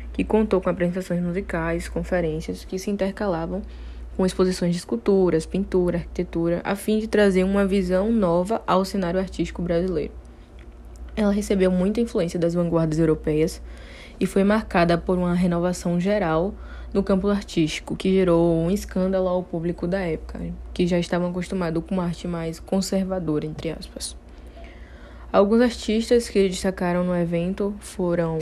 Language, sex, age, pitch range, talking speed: Portuguese, female, 10-29, 165-190 Hz, 145 wpm